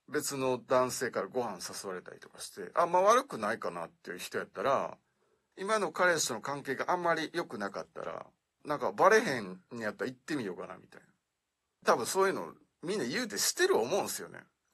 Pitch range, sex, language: 140-200 Hz, male, Japanese